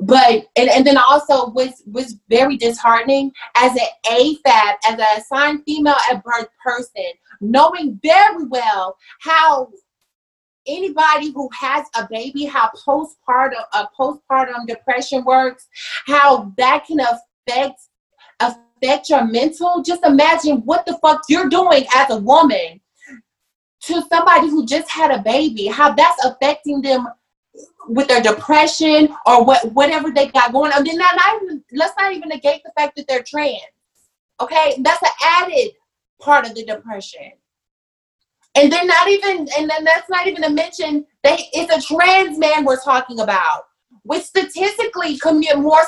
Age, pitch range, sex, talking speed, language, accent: 30-49, 240-310 Hz, female, 150 wpm, English, American